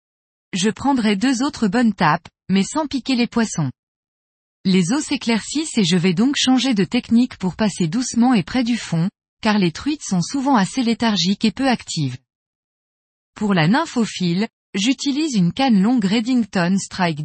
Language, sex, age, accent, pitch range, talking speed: French, female, 20-39, French, 180-250 Hz, 165 wpm